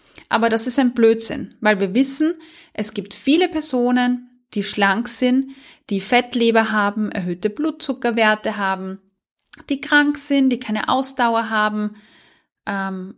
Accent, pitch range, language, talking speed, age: German, 210-260 Hz, German, 130 wpm, 30-49